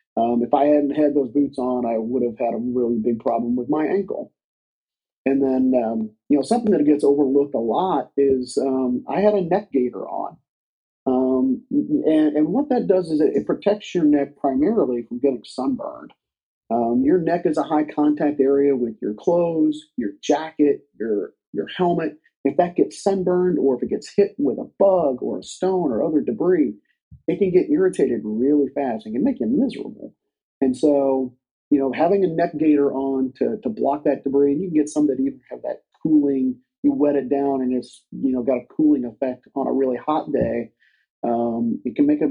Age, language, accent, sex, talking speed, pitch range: 40-59, English, American, male, 205 wpm, 125-175 Hz